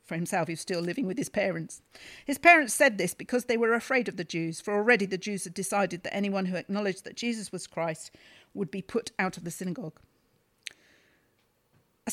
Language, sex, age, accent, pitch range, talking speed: English, female, 50-69, British, 190-265 Hz, 210 wpm